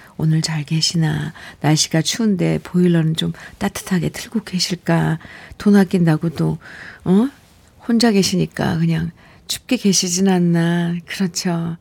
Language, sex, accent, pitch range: Korean, female, native, 175-230 Hz